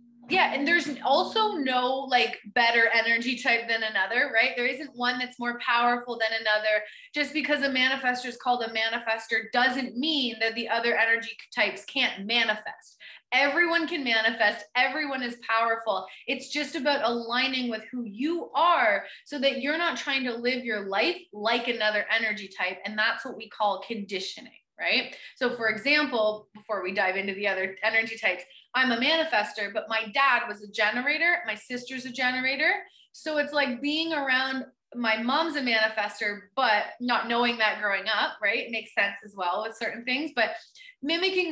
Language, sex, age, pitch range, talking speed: English, female, 20-39, 225-280 Hz, 175 wpm